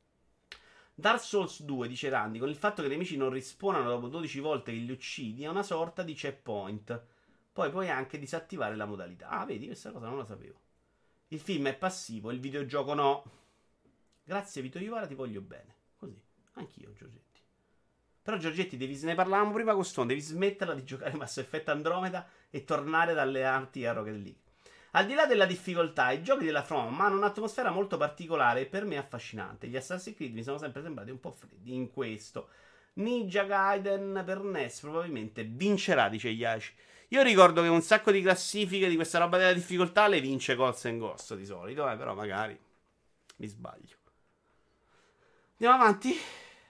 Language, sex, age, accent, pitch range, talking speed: Italian, male, 30-49, native, 130-195 Hz, 175 wpm